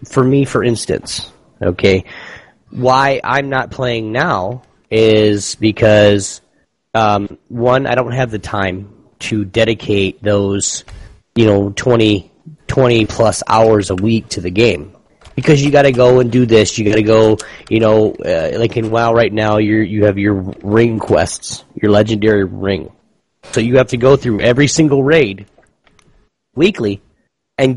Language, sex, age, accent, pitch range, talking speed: English, male, 30-49, American, 105-130 Hz, 155 wpm